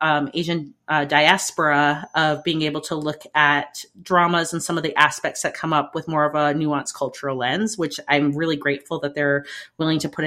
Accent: American